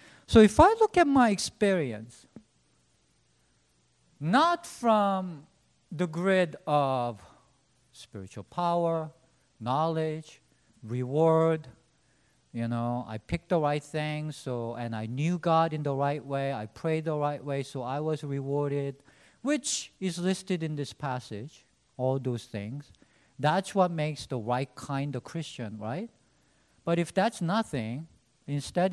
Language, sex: English, male